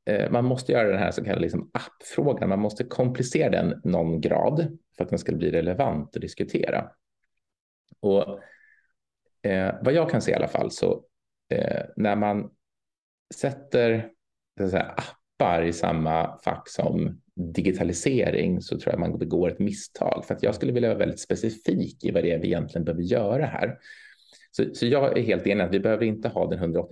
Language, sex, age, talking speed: Swedish, male, 30-49, 185 wpm